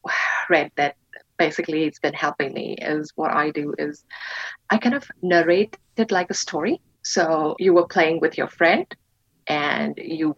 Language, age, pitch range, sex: English, 30-49, 165-215 Hz, female